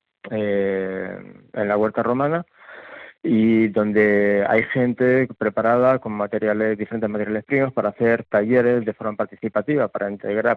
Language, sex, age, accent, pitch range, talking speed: Spanish, male, 20-39, Spanish, 105-115 Hz, 130 wpm